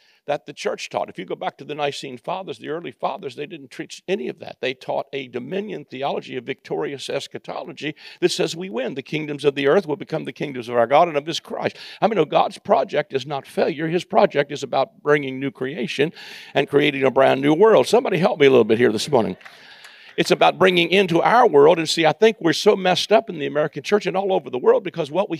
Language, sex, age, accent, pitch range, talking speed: English, male, 50-69, American, 140-205 Hz, 250 wpm